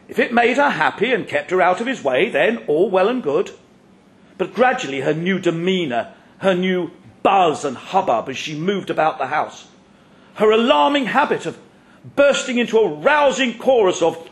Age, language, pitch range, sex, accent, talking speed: 50-69, English, 175-270 Hz, male, British, 180 wpm